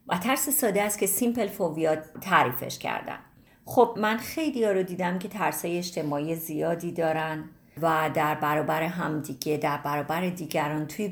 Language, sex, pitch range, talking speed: Persian, female, 160-205 Hz, 150 wpm